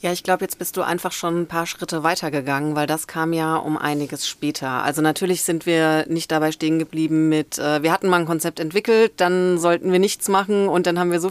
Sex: female